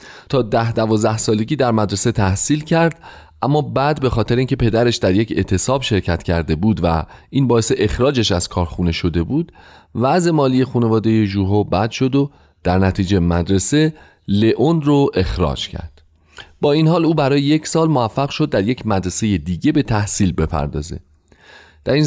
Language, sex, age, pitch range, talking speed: Persian, male, 30-49, 90-145 Hz, 165 wpm